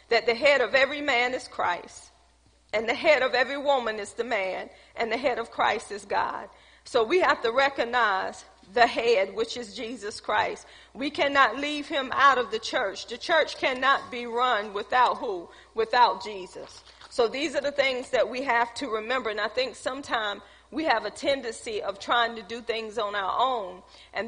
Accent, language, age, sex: American, English, 40-59, female